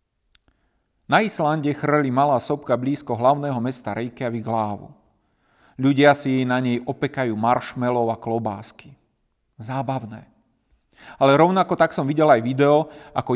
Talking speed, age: 120 wpm, 40-59